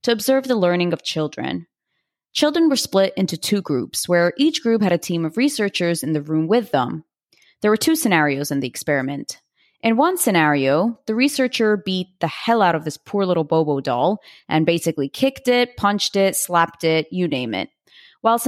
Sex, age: female, 20-39